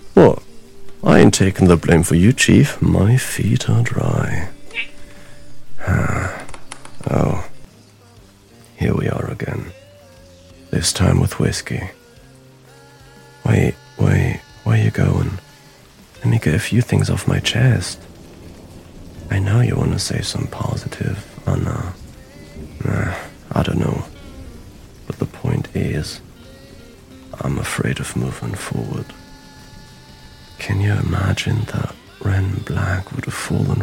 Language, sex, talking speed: English, male, 120 wpm